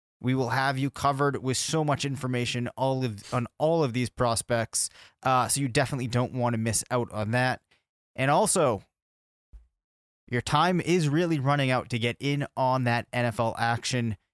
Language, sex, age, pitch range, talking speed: English, male, 20-39, 115-140 Hz, 165 wpm